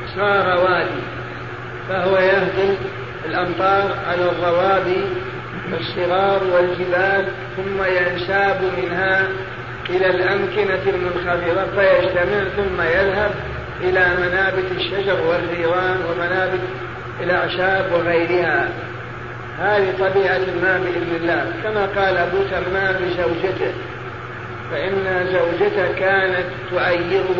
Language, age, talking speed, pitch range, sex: Arabic, 40-59, 85 wpm, 175-195 Hz, male